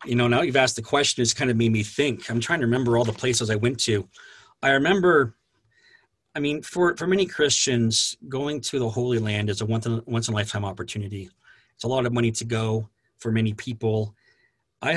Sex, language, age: male, English, 40-59